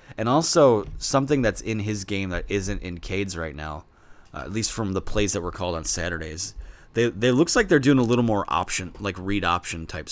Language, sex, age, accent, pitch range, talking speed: English, male, 30-49, American, 85-120 Hz, 225 wpm